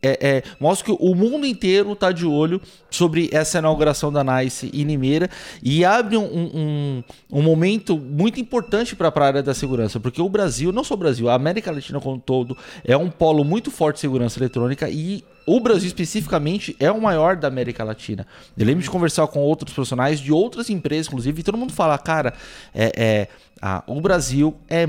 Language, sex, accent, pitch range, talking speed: Portuguese, male, Brazilian, 135-175 Hz, 185 wpm